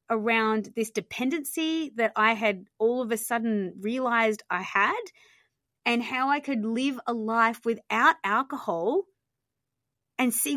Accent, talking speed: Australian, 135 wpm